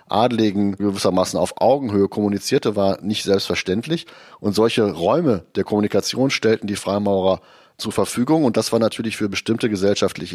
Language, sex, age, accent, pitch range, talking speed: German, male, 30-49, German, 100-115 Hz, 145 wpm